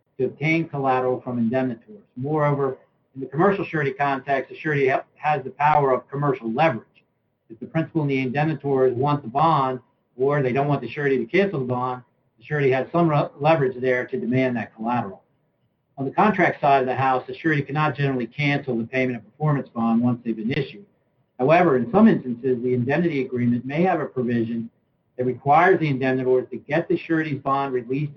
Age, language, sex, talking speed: 60-79, English, male, 195 wpm